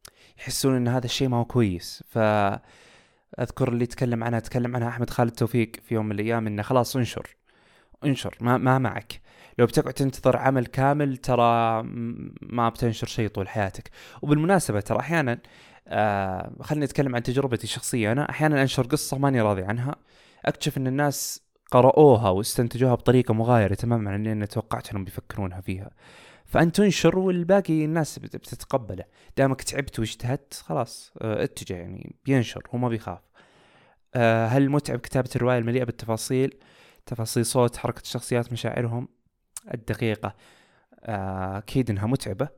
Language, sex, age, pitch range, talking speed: Arabic, male, 20-39, 110-130 Hz, 140 wpm